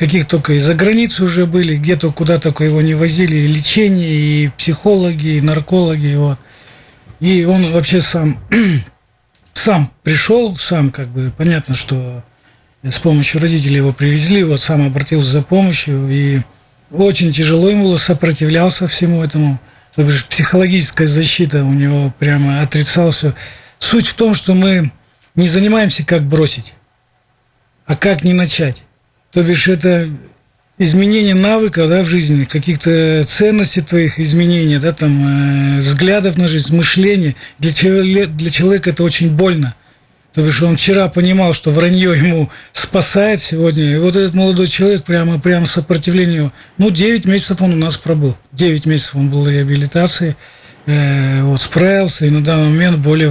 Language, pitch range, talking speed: Russian, 145-180 Hz, 150 wpm